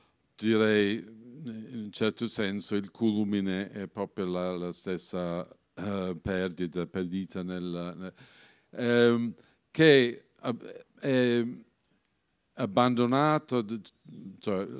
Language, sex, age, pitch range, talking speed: Italian, male, 50-69, 95-115 Hz, 95 wpm